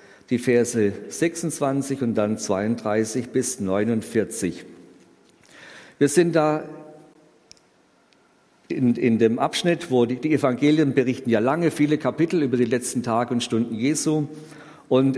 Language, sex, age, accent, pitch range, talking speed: German, male, 50-69, German, 120-160 Hz, 125 wpm